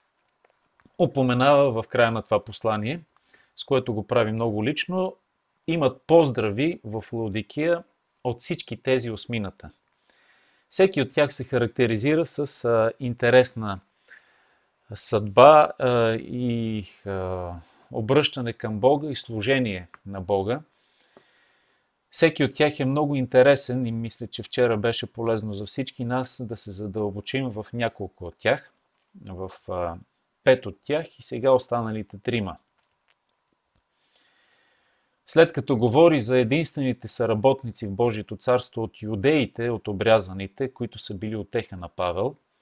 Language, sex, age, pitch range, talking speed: Bulgarian, male, 30-49, 105-135 Hz, 120 wpm